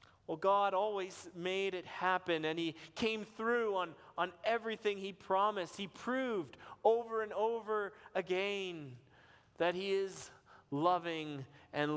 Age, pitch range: 30-49, 155-200 Hz